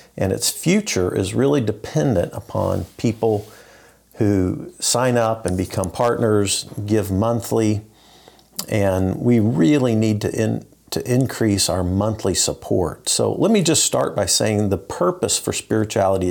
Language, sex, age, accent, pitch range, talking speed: English, male, 50-69, American, 95-120 Hz, 135 wpm